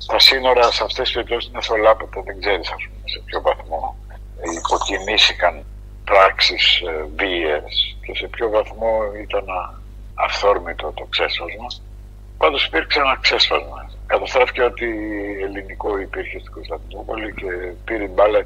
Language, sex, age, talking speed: Greek, male, 60-79, 120 wpm